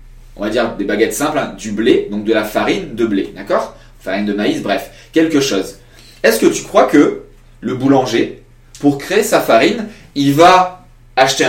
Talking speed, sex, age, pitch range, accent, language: 190 wpm, male, 30-49, 120-185 Hz, French, French